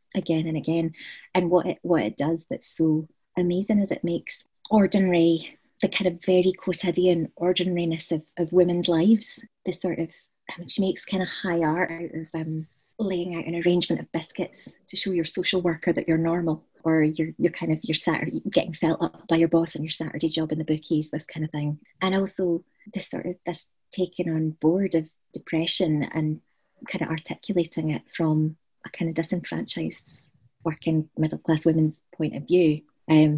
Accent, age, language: British, 30-49, English